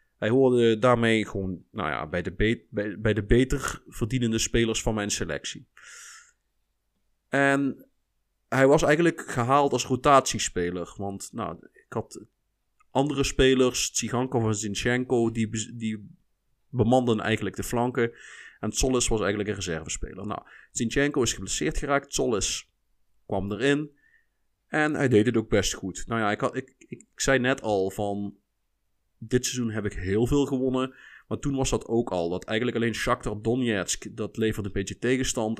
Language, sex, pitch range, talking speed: Dutch, male, 105-130 Hz, 160 wpm